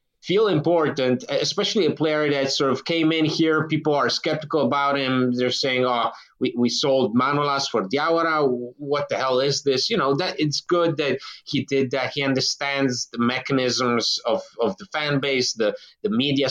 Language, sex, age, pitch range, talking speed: English, male, 30-49, 130-160 Hz, 185 wpm